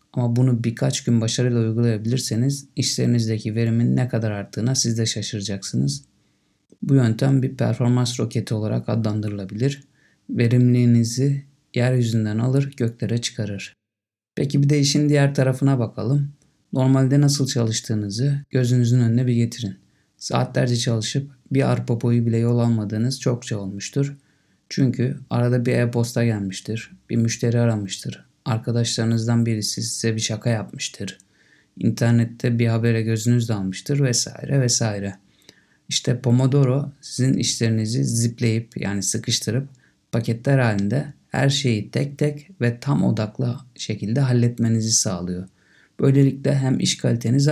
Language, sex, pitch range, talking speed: Turkish, male, 115-135 Hz, 115 wpm